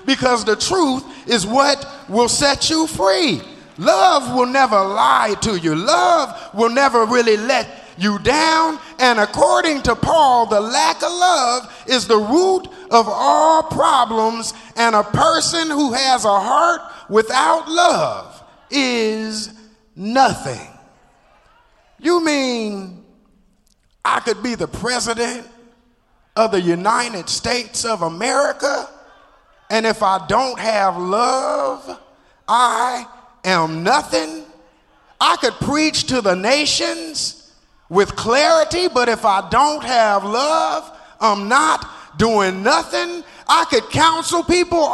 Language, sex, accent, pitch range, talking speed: English, male, American, 220-315 Hz, 120 wpm